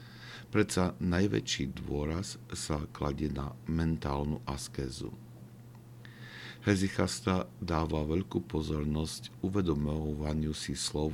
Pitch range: 75-90 Hz